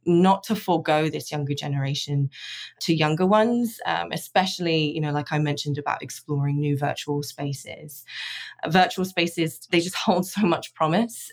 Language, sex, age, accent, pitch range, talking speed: English, female, 20-39, British, 145-185 Hz, 155 wpm